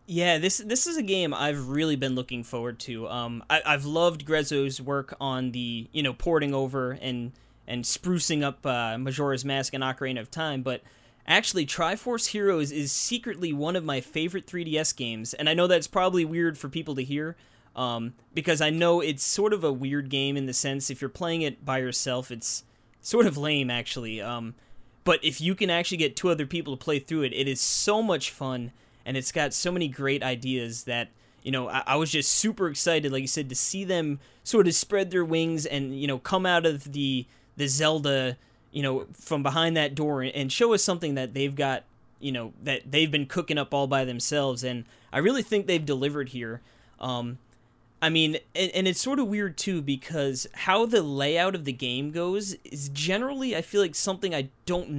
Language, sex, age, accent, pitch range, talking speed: English, male, 20-39, American, 130-165 Hz, 210 wpm